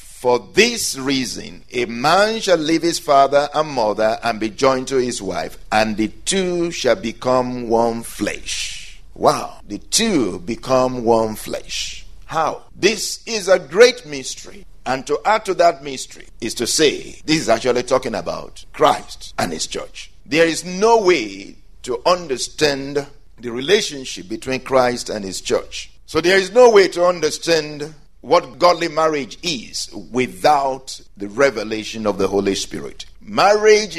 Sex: male